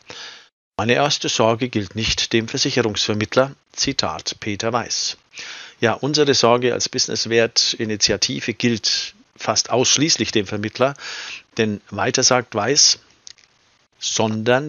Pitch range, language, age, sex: 110-125 Hz, German, 50-69, male